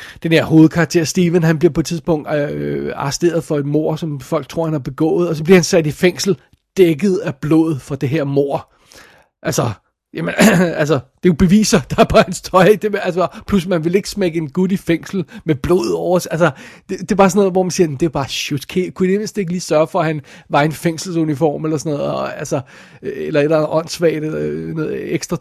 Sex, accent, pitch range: male, native, 155-195 Hz